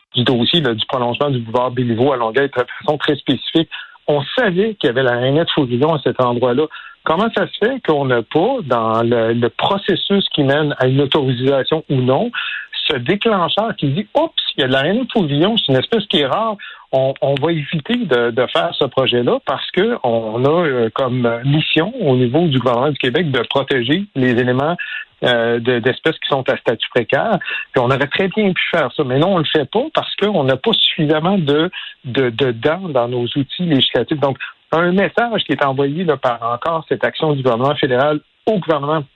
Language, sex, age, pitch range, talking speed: French, male, 60-79, 125-170 Hz, 210 wpm